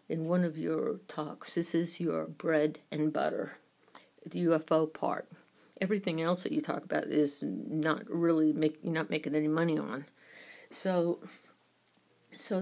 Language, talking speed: English, 145 wpm